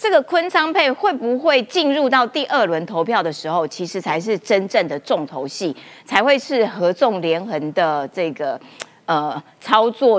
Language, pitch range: Chinese, 180-300 Hz